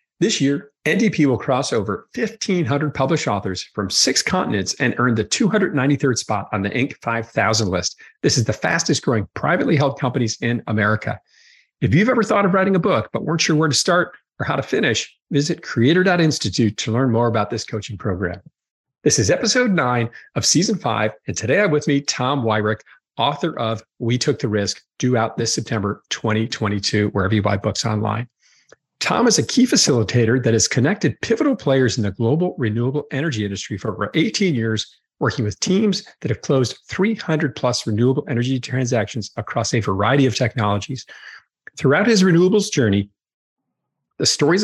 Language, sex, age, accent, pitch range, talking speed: English, male, 40-59, American, 110-155 Hz, 175 wpm